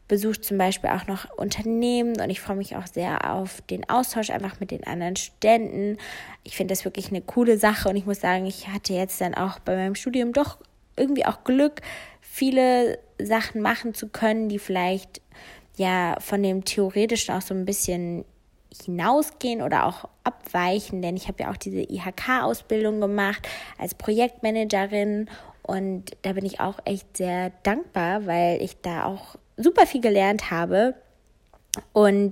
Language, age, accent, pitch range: German, 20-39, German, 190-230 Hz